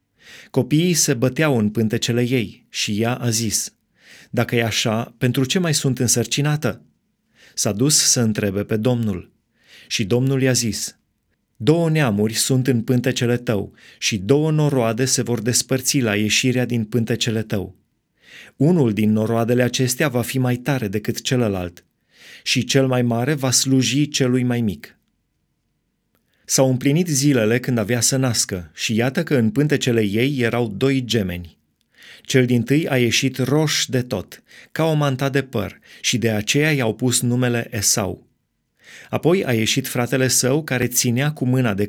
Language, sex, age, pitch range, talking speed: Romanian, male, 30-49, 110-135 Hz, 160 wpm